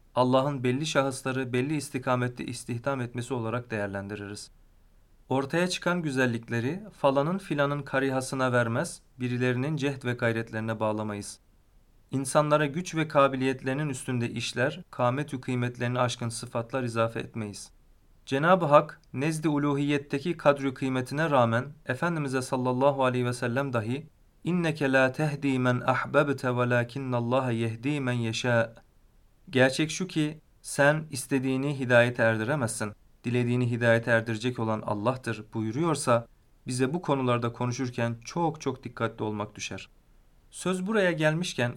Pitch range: 120-145 Hz